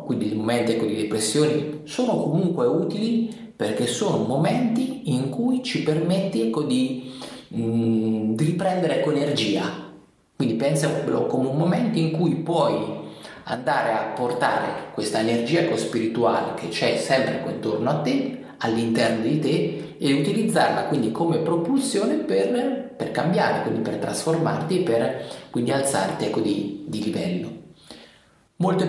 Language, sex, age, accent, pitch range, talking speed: Italian, male, 30-49, native, 110-170 Hz, 140 wpm